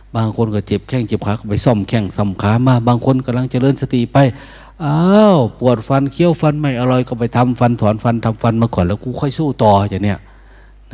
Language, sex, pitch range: Thai, male, 100-140 Hz